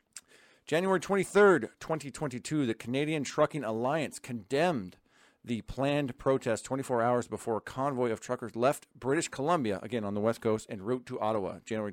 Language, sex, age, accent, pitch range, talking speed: English, male, 40-59, American, 110-135 Hz, 155 wpm